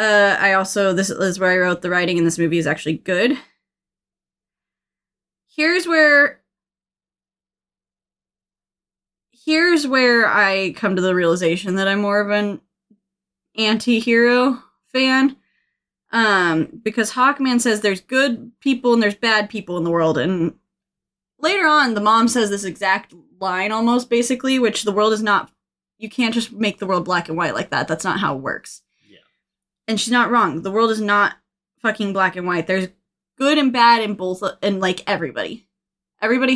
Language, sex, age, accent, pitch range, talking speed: English, female, 20-39, American, 185-230 Hz, 165 wpm